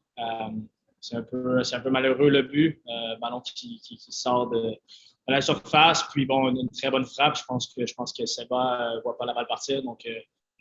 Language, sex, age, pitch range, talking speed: French, male, 20-39, 120-145 Hz, 245 wpm